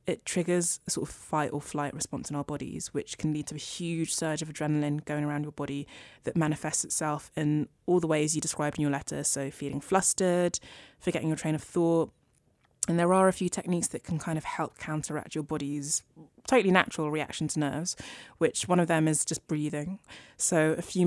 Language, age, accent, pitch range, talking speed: English, 20-39, British, 150-170 Hz, 210 wpm